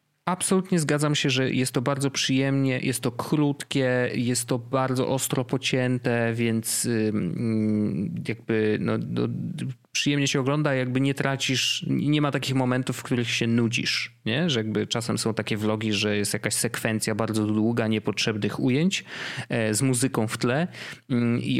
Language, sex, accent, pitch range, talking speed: Polish, male, native, 110-140 Hz, 150 wpm